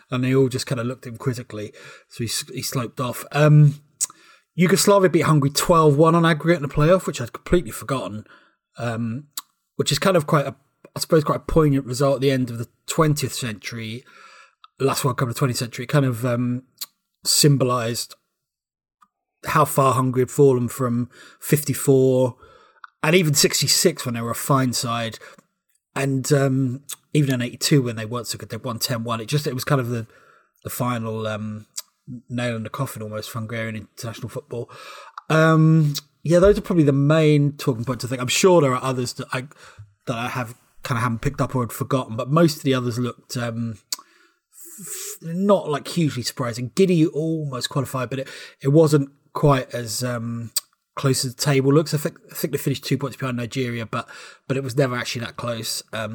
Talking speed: 195 wpm